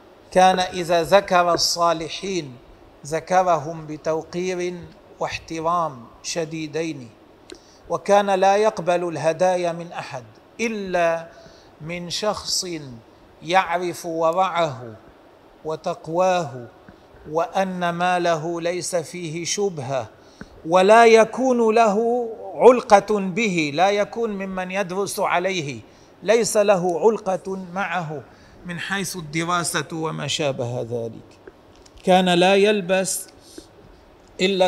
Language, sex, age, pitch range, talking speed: Arabic, male, 40-59, 160-195 Hz, 85 wpm